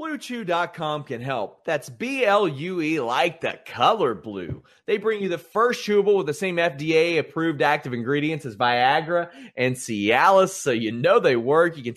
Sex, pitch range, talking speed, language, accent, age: male, 140-205 Hz, 160 wpm, English, American, 30-49